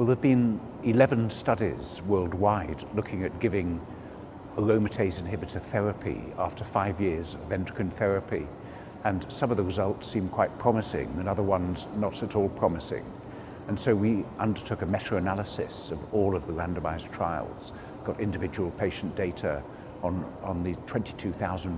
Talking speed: 150 wpm